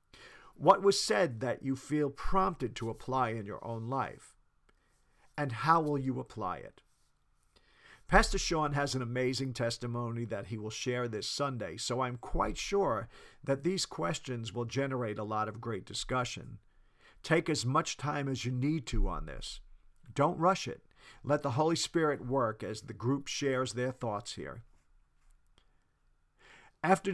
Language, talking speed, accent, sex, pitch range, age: English, 155 wpm, American, male, 115-155 Hz, 50-69